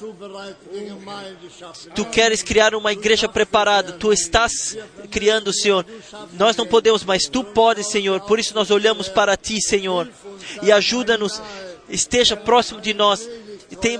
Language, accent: Portuguese, Brazilian